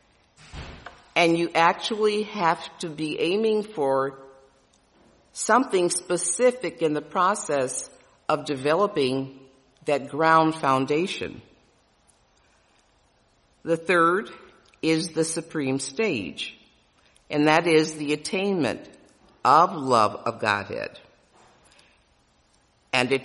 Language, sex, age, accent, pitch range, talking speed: English, female, 50-69, American, 140-180 Hz, 90 wpm